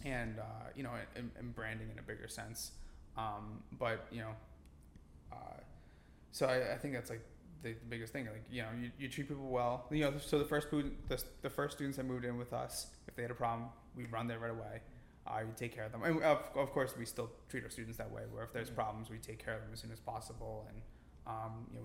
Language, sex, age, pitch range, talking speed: English, male, 20-39, 110-125 Hz, 255 wpm